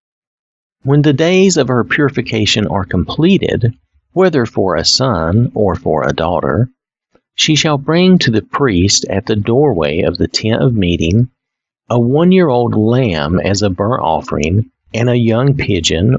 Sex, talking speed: male, 150 wpm